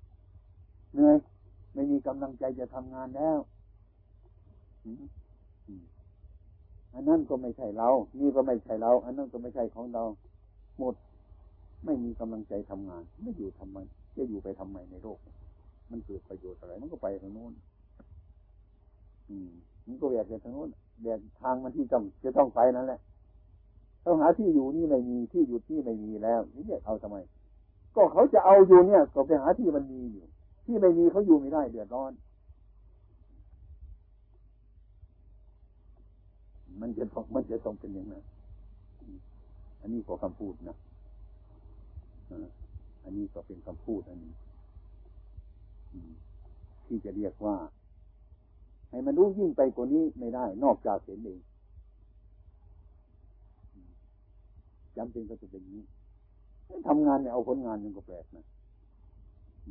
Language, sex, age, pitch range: Thai, male, 60-79, 90-115 Hz